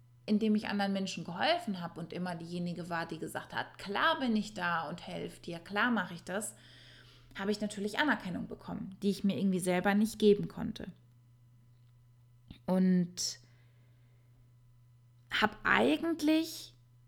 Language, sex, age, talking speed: German, female, 20-39, 140 wpm